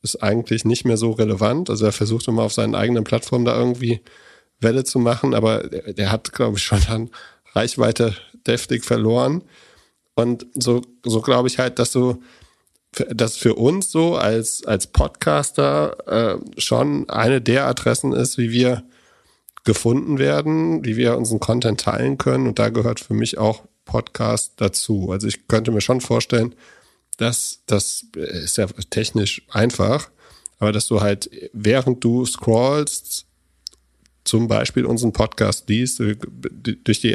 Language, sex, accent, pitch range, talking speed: German, male, German, 110-125 Hz, 150 wpm